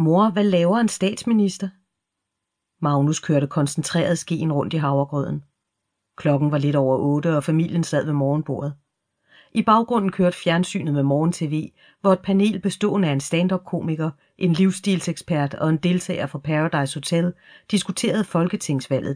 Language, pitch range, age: Danish, 145-180 Hz, 40-59